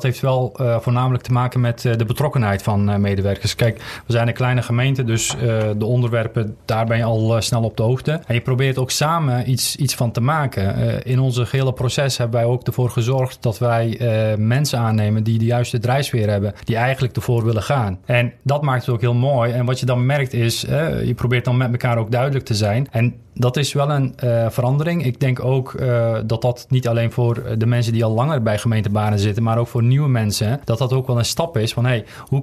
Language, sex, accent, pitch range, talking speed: Dutch, male, Dutch, 115-130 Hz, 240 wpm